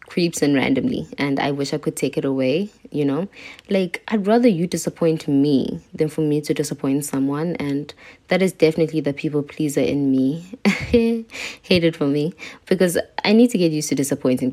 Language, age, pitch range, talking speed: English, 20-39, 140-170 Hz, 190 wpm